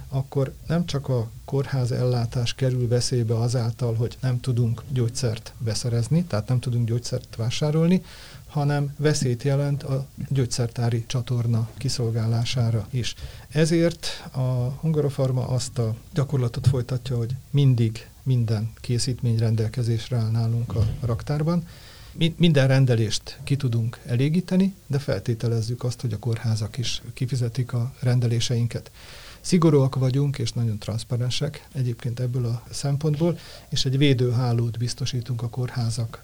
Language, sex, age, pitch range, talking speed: Hungarian, male, 40-59, 115-135 Hz, 120 wpm